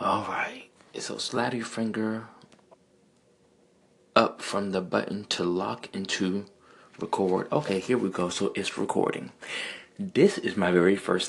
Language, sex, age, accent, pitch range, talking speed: English, male, 30-49, American, 90-115 Hz, 140 wpm